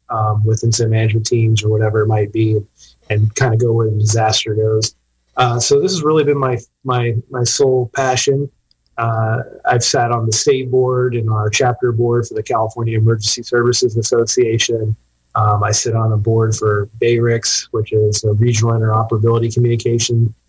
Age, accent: 30-49, American